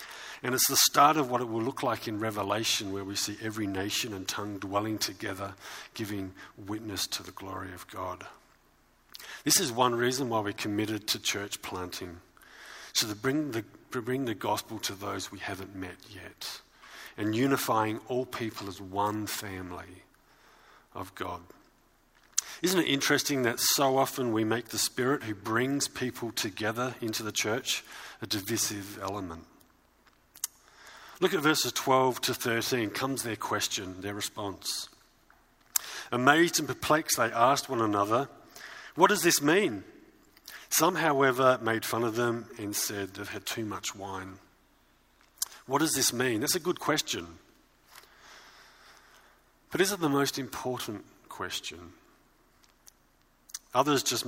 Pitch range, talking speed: 100-125 Hz, 145 wpm